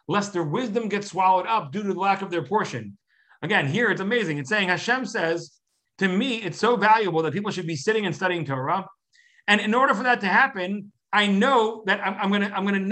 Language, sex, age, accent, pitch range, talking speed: English, male, 40-59, American, 190-245 Hz, 220 wpm